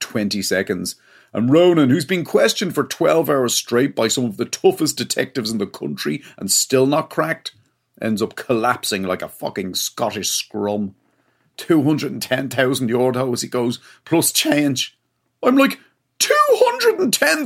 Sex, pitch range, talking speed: male, 110-165 Hz, 165 wpm